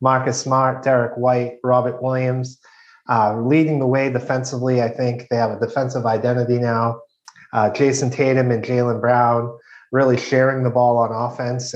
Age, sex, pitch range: 30-49, male, 115-130 Hz